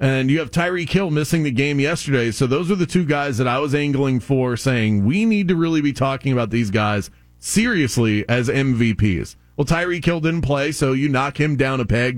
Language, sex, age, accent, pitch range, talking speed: English, male, 30-49, American, 115-170 Hz, 220 wpm